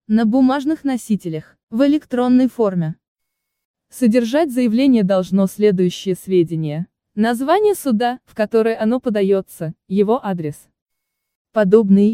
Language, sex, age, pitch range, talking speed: Russian, female, 20-39, 185-245 Hz, 100 wpm